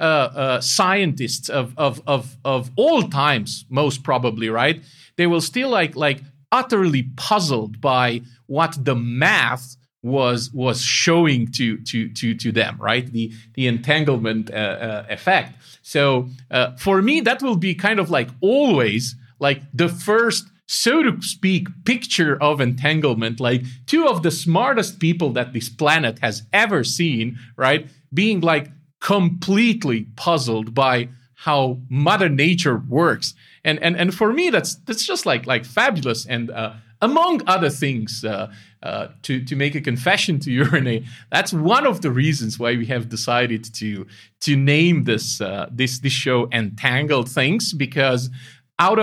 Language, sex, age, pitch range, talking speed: English, male, 40-59, 120-165 Hz, 155 wpm